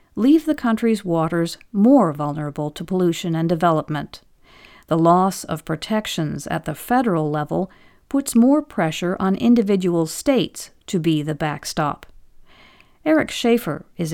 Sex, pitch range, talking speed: female, 160-210 Hz, 130 wpm